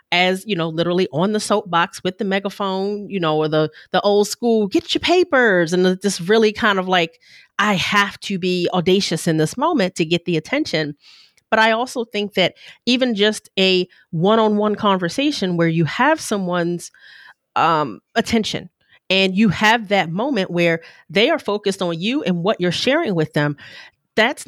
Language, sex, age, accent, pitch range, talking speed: English, female, 30-49, American, 170-215 Hz, 180 wpm